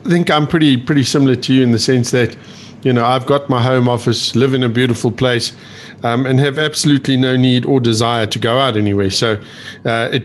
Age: 50-69